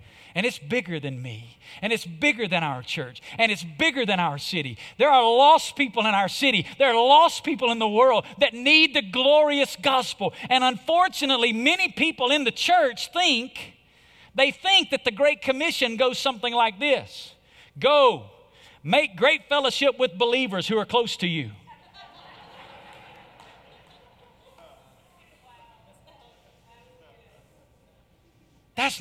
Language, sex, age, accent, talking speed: English, male, 50-69, American, 135 wpm